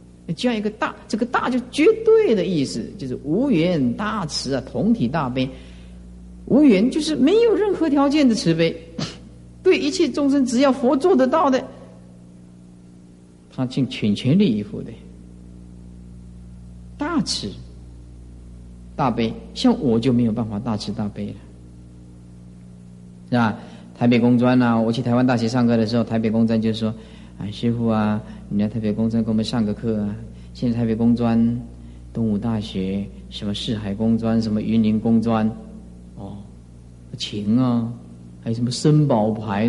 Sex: male